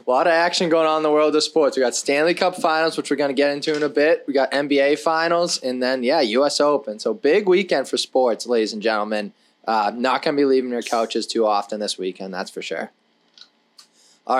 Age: 20-39